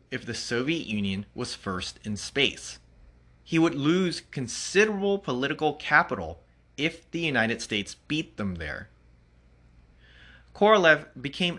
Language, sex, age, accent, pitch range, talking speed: English, male, 30-49, American, 85-140 Hz, 120 wpm